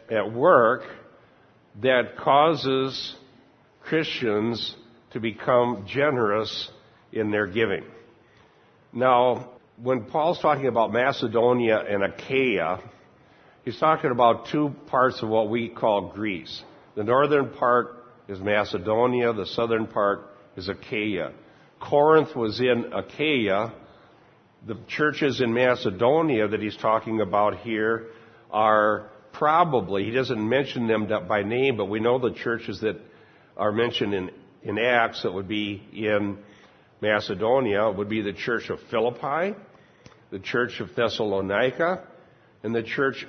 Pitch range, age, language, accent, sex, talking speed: 105-130 Hz, 60-79, English, American, male, 125 wpm